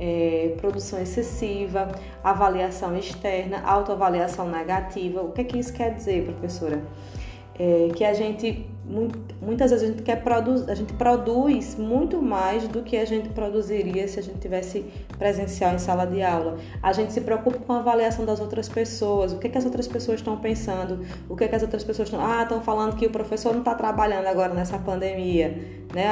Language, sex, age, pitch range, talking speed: Portuguese, female, 20-39, 175-220 Hz, 195 wpm